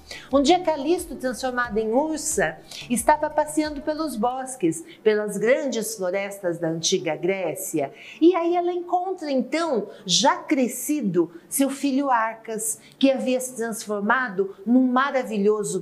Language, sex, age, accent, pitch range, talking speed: Portuguese, female, 40-59, Brazilian, 200-275 Hz, 120 wpm